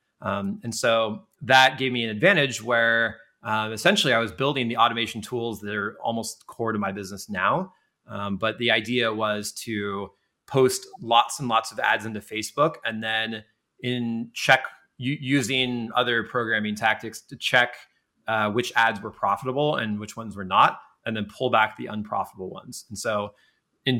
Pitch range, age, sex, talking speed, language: 105-120 Hz, 30-49, male, 175 wpm, English